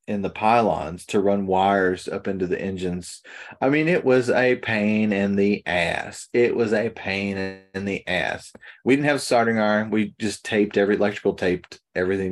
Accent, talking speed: American, 190 wpm